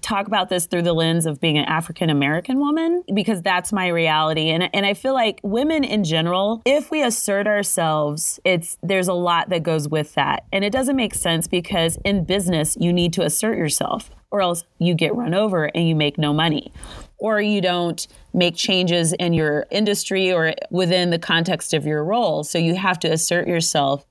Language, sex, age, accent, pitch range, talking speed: English, female, 30-49, American, 165-200 Hz, 200 wpm